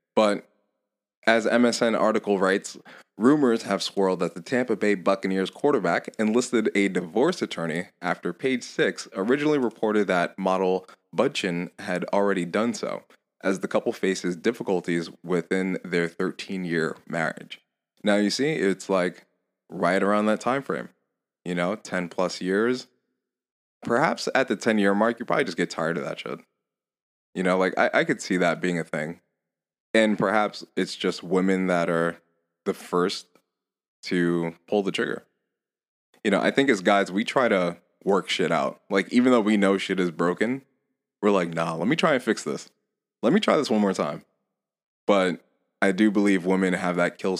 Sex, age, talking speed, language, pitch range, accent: male, 20-39, 170 wpm, English, 90-110 Hz, American